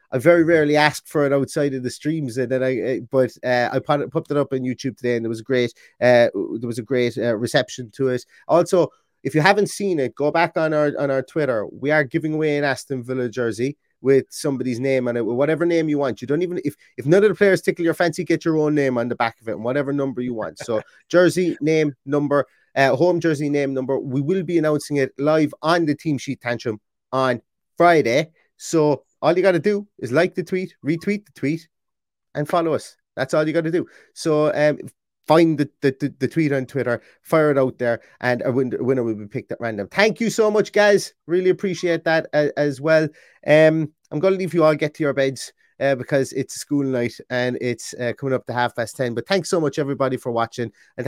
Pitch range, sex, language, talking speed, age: 125-160 Hz, male, English, 240 wpm, 30-49